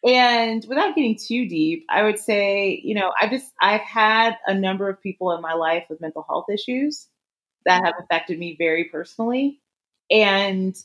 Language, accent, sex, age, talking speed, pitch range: English, American, female, 30-49, 175 wpm, 180-225 Hz